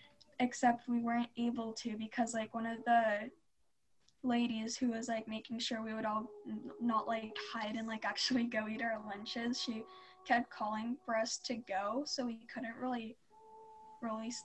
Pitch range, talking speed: 225-255 Hz, 170 wpm